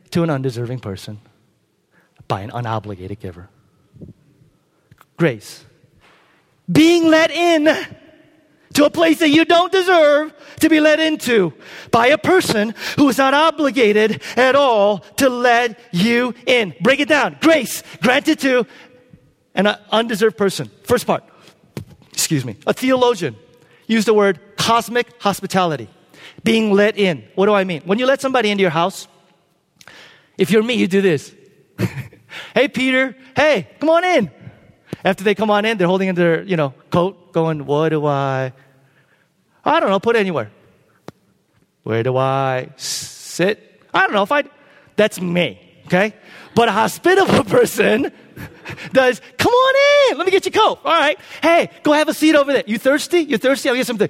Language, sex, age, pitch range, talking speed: English, male, 40-59, 170-275 Hz, 160 wpm